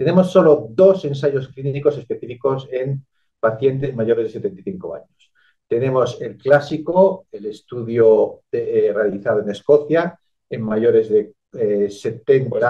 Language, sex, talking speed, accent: English, male, 130 wpm, Spanish